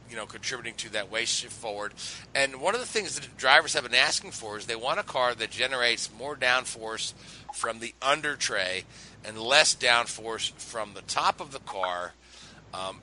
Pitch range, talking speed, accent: 110-130 Hz, 195 wpm, American